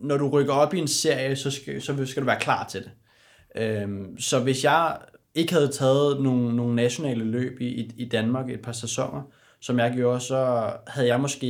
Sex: male